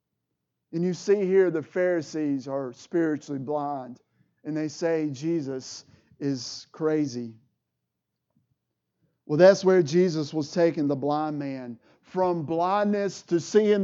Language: English